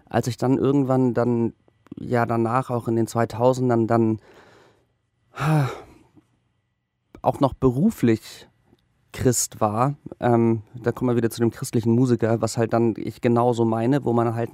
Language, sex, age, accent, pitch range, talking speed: German, male, 40-59, German, 115-150 Hz, 145 wpm